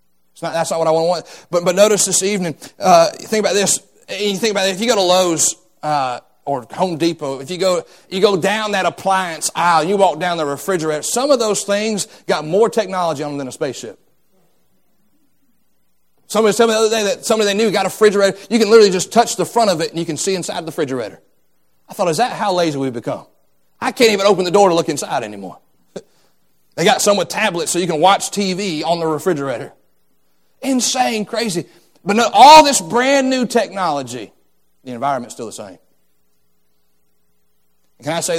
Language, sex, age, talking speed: English, male, 30-49, 210 wpm